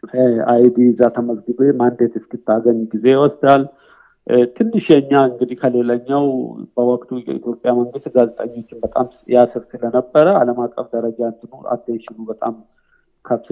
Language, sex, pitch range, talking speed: Amharic, male, 115-140 Hz, 140 wpm